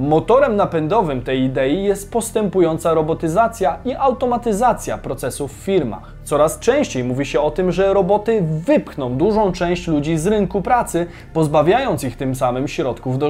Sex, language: male, Polish